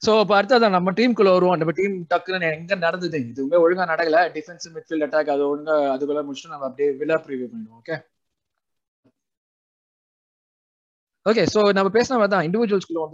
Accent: native